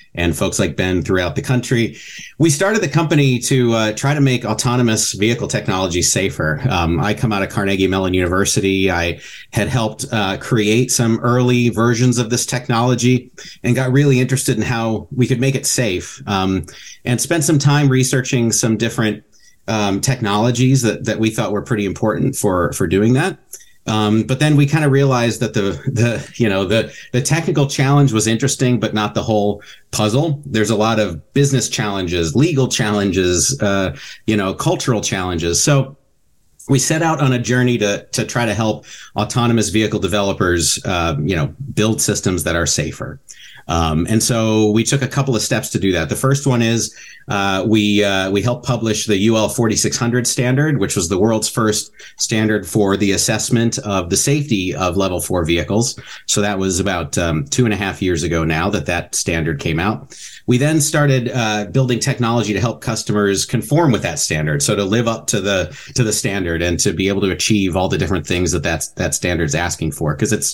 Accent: American